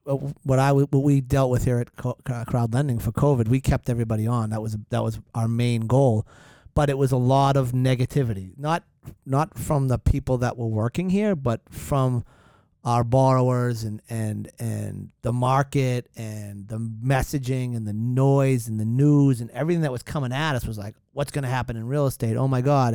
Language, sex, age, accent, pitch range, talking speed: English, male, 40-59, American, 120-145 Hz, 195 wpm